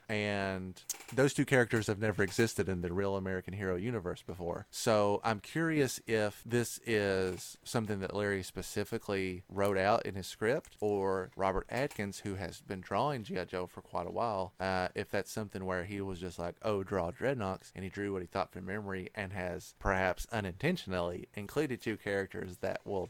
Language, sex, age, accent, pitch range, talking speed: English, male, 30-49, American, 95-110 Hz, 185 wpm